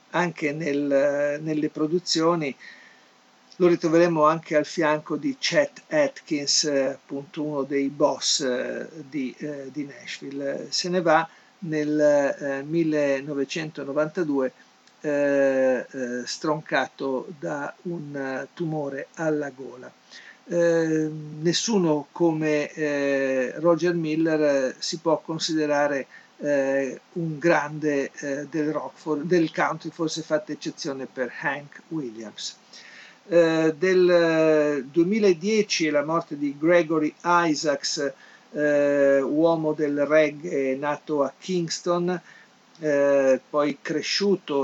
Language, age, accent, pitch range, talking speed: Italian, 50-69, native, 140-165 Hz, 100 wpm